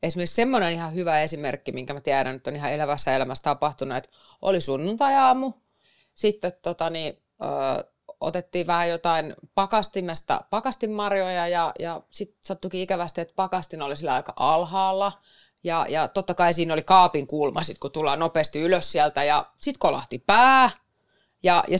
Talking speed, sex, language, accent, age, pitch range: 150 wpm, female, Finnish, native, 30-49, 150-195 Hz